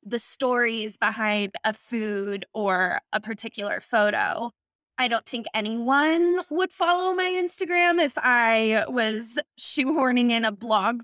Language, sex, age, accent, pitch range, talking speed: English, female, 20-39, American, 215-270 Hz, 130 wpm